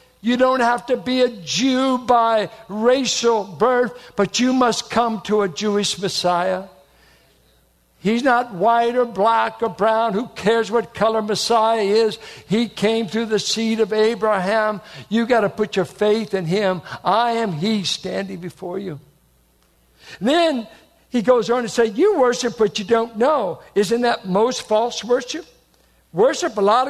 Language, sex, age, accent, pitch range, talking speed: English, male, 60-79, American, 175-235 Hz, 160 wpm